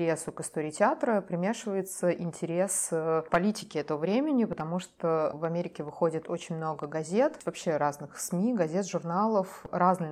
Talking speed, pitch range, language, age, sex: 130 wpm, 160-185 Hz, Russian, 20-39, female